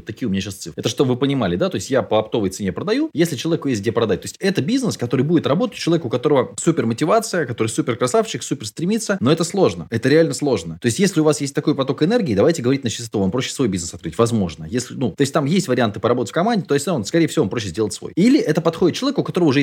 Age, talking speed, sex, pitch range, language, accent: 20-39, 275 wpm, male, 110-165 Hz, Russian, native